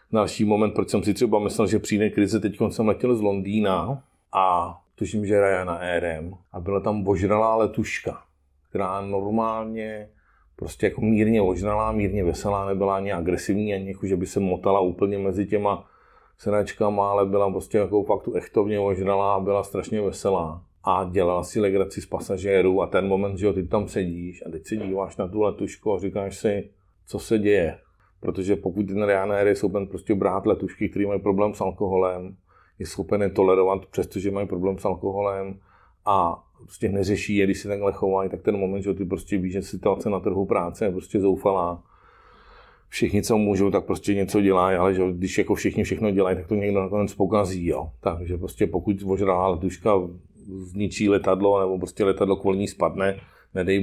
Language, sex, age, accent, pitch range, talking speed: Czech, male, 40-59, native, 95-100 Hz, 185 wpm